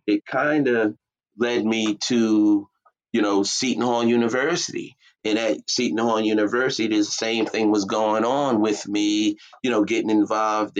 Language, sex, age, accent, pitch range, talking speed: English, male, 30-49, American, 105-125 Hz, 155 wpm